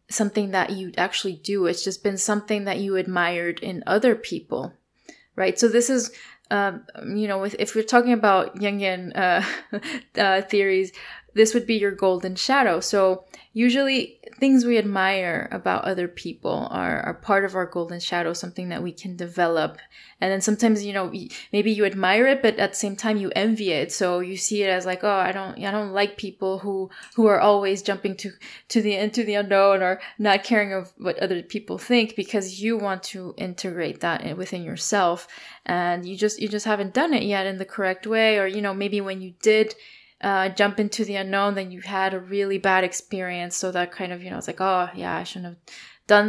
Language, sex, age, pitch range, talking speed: English, female, 20-39, 185-215 Hz, 205 wpm